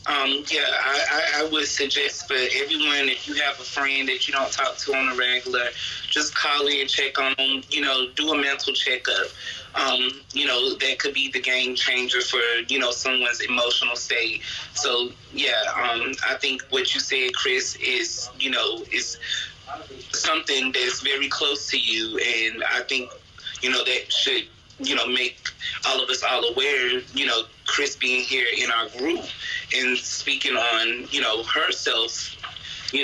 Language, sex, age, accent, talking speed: English, male, 30-49, American, 175 wpm